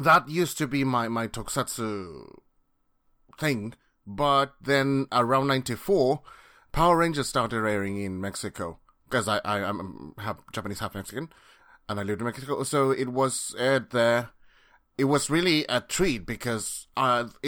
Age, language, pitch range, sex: 30-49, English, 110-140 Hz, male